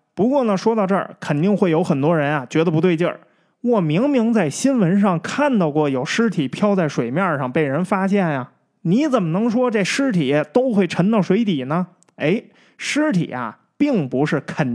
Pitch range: 150-215 Hz